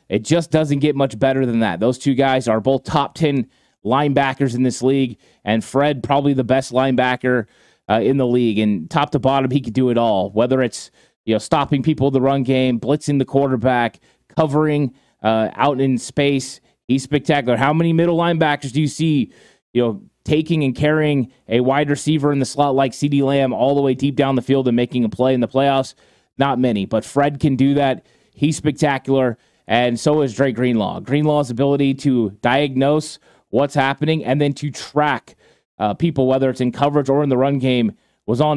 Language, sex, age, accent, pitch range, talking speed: English, male, 20-39, American, 130-150 Hz, 200 wpm